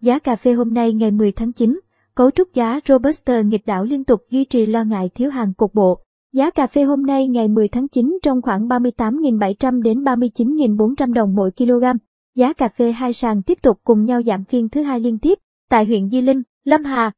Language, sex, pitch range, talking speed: Vietnamese, male, 225-255 Hz, 220 wpm